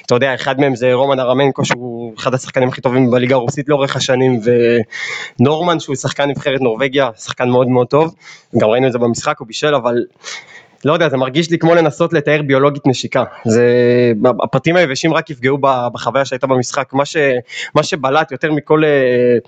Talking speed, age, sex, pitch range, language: 175 wpm, 20-39, male, 125-160 Hz, Hebrew